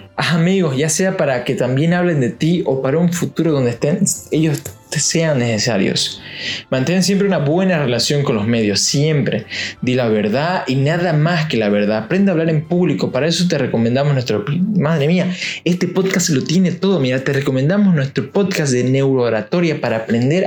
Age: 20-39